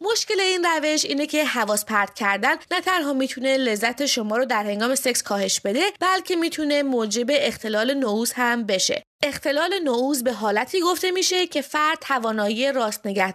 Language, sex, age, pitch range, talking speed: English, female, 20-39, 225-330 Hz, 165 wpm